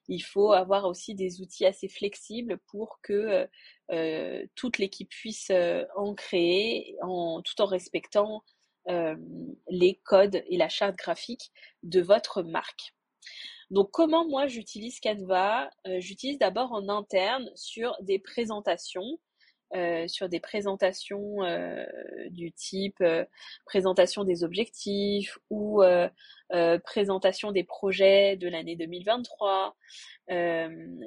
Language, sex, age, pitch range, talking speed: French, female, 20-39, 180-215 Hz, 120 wpm